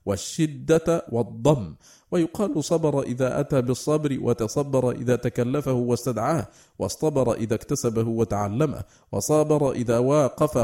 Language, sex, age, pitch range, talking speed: Arabic, male, 50-69, 115-145 Hz, 100 wpm